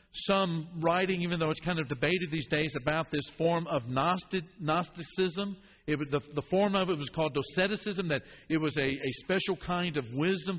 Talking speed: 185 wpm